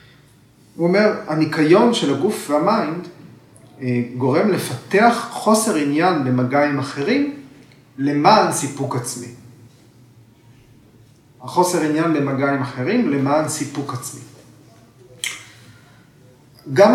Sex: male